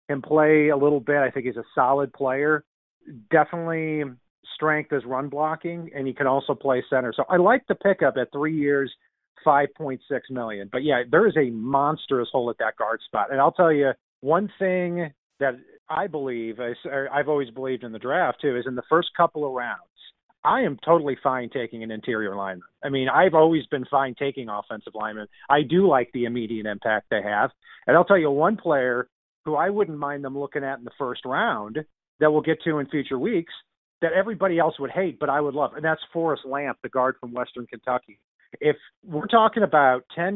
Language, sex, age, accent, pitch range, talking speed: English, male, 40-59, American, 125-160 Hz, 210 wpm